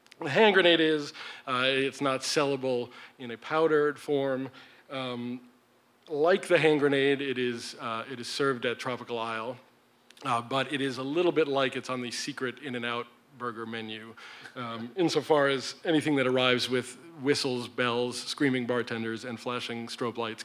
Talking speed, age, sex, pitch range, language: 165 wpm, 40-59, male, 120-145 Hz, English